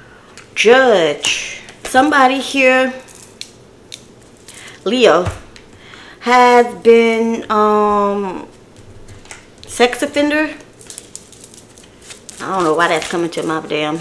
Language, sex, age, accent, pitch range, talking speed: English, female, 30-49, American, 185-240 Hz, 75 wpm